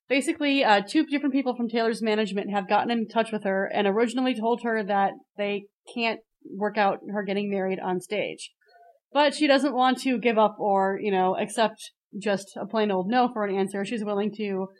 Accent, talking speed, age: American, 205 wpm, 20-39